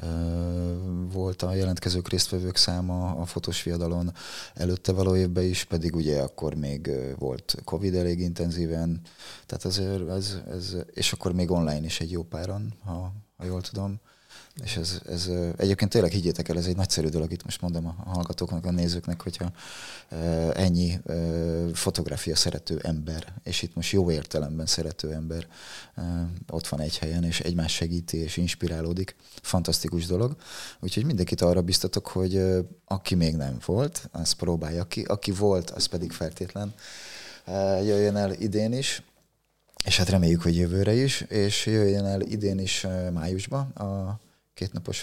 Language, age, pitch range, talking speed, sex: Hungarian, 20-39, 85-100 Hz, 140 wpm, male